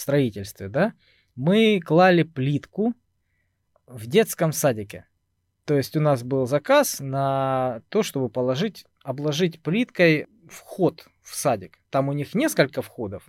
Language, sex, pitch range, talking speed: Russian, male, 120-180 Hz, 125 wpm